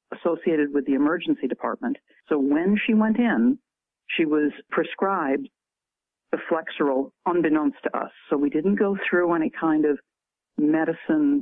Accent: American